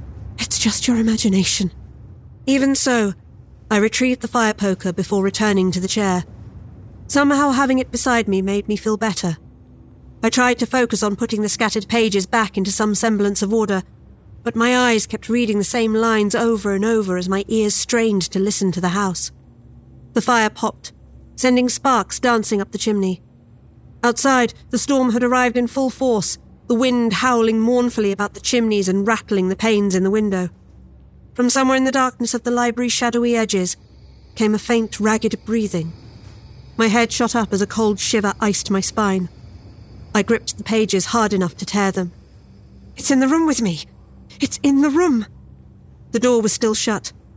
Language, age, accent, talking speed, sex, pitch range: English, 40-59, British, 180 wpm, female, 195-235 Hz